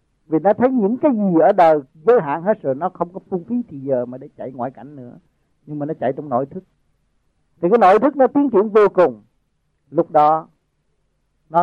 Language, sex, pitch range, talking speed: Vietnamese, male, 140-200 Hz, 225 wpm